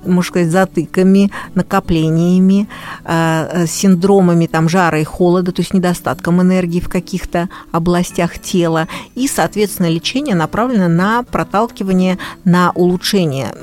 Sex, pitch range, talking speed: female, 165-195 Hz, 110 wpm